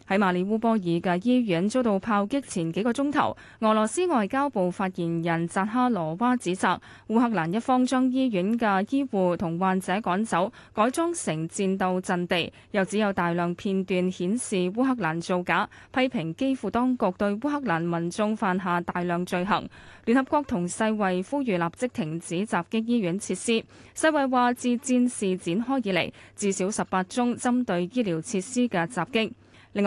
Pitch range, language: 180-240 Hz, Chinese